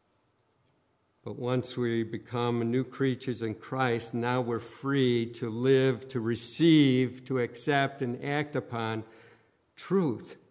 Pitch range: 125-160 Hz